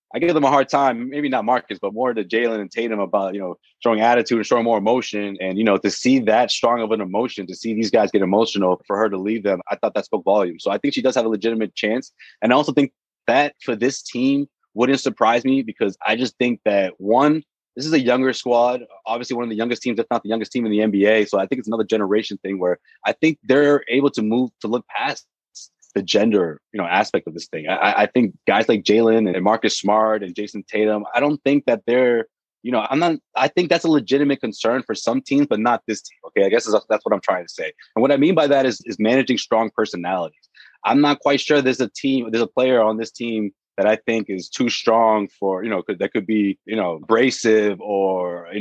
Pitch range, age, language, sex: 105-135 Hz, 20-39, English, male